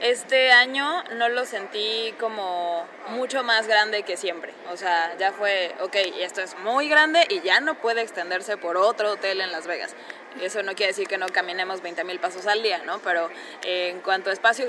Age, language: 20-39, Spanish